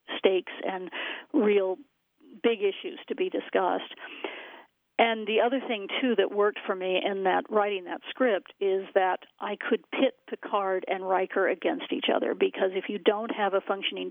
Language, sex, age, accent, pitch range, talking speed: English, female, 50-69, American, 190-275 Hz, 170 wpm